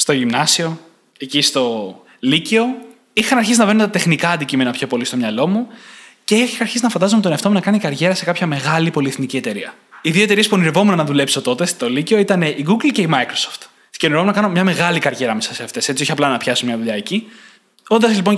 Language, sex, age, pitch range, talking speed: Greek, male, 20-39, 140-205 Hz, 220 wpm